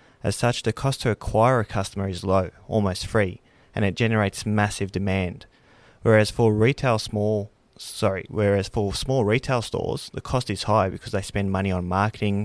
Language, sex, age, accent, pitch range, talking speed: English, male, 20-39, Australian, 95-115 Hz, 180 wpm